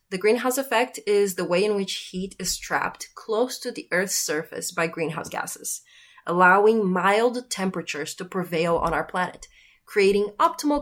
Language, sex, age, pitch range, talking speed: English, female, 20-39, 170-205 Hz, 160 wpm